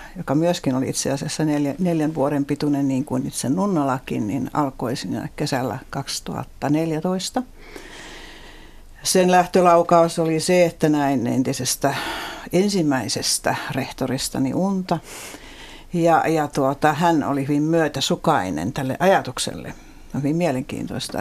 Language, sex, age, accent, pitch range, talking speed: Finnish, female, 60-79, native, 135-170 Hz, 115 wpm